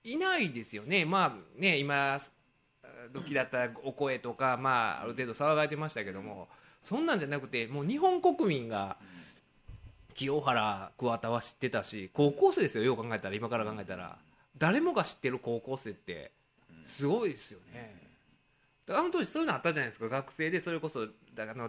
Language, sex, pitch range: Japanese, male, 115-155 Hz